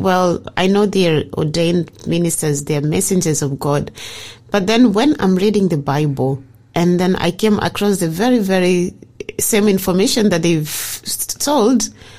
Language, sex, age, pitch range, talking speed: English, female, 30-49, 150-200 Hz, 150 wpm